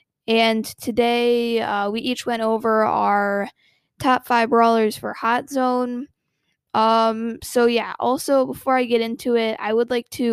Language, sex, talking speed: English, female, 155 wpm